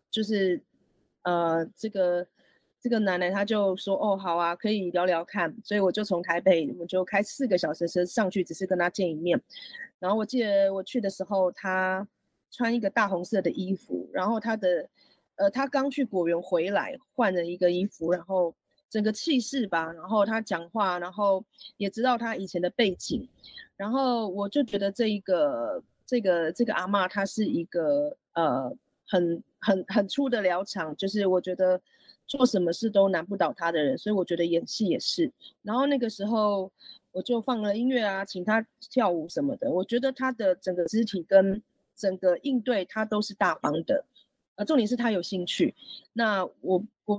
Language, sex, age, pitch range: Japanese, female, 30-49, 180-235 Hz